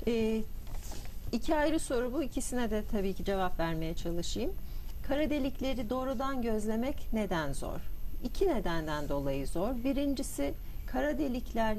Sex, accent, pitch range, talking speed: female, native, 165-230 Hz, 125 wpm